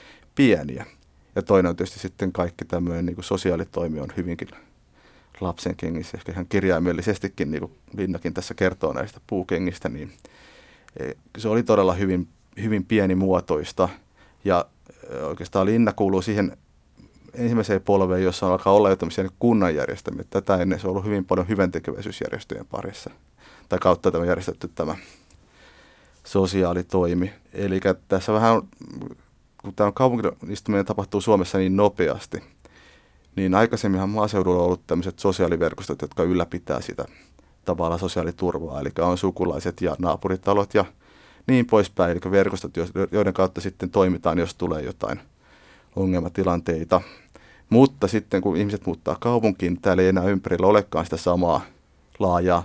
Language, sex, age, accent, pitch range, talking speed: Finnish, male, 30-49, native, 90-100 Hz, 130 wpm